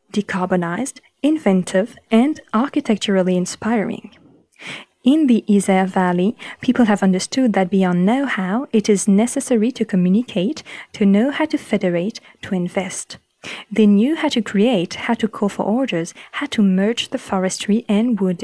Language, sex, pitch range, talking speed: French, female, 190-245 Hz, 145 wpm